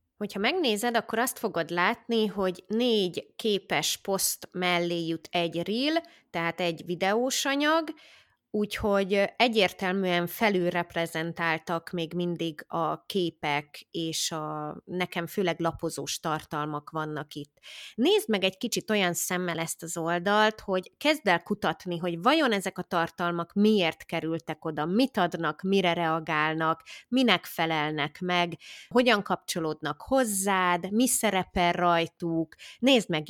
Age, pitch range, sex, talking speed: 20-39, 165-215 Hz, female, 125 wpm